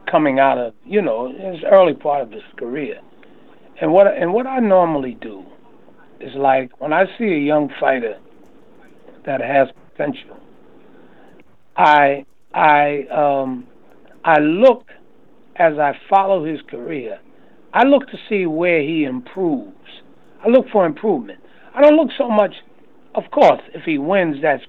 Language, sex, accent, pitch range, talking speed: English, male, American, 150-220 Hz, 150 wpm